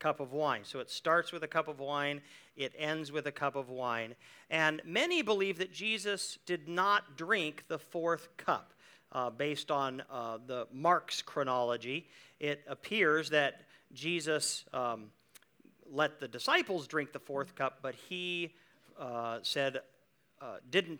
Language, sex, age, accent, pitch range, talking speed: English, male, 50-69, American, 125-165 Hz, 155 wpm